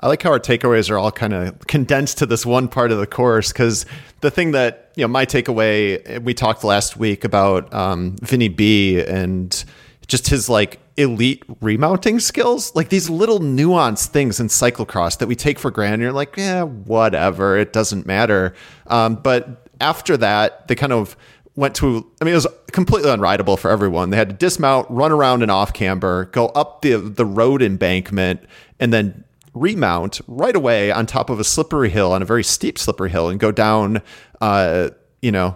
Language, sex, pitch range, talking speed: English, male, 105-140 Hz, 190 wpm